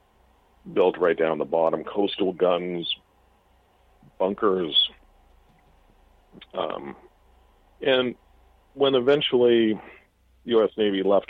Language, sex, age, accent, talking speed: English, male, 40-59, American, 85 wpm